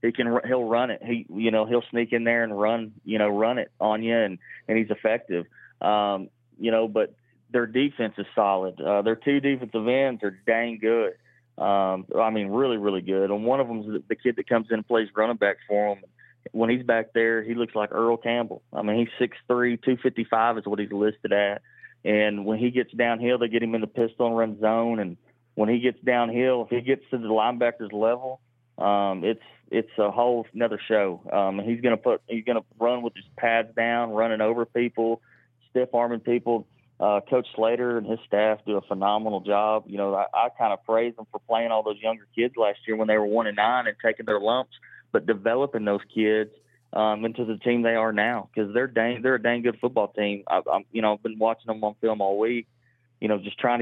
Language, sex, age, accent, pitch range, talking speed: English, male, 30-49, American, 105-120 Hz, 230 wpm